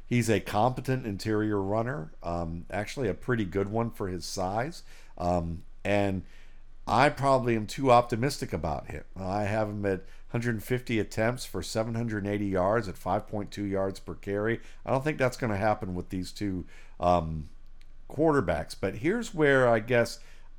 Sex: male